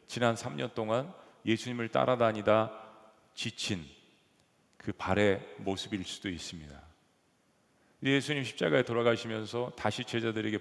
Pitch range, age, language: 95-120 Hz, 40-59, Korean